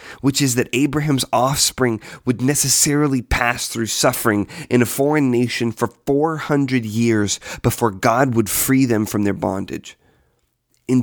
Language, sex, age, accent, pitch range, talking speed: English, male, 30-49, American, 110-145 Hz, 140 wpm